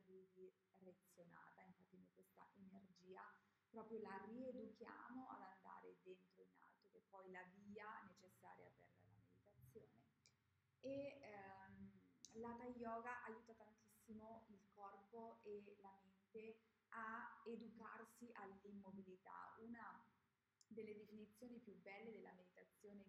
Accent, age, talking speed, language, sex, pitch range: native, 20-39, 110 wpm, Italian, female, 185-220 Hz